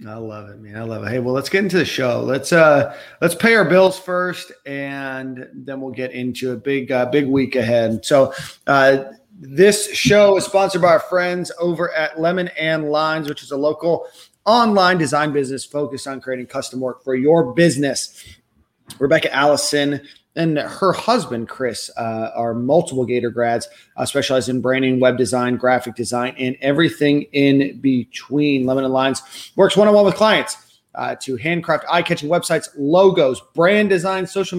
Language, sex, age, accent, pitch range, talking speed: English, male, 30-49, American, 130-170 Hz, 175 wpm